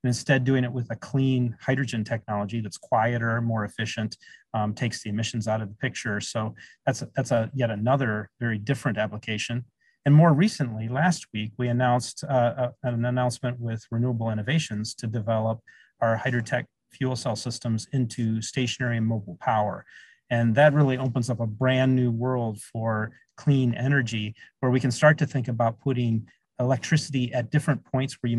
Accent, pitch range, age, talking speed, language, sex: American, 110-130 Hz, 30-49, 175 wpm, English, male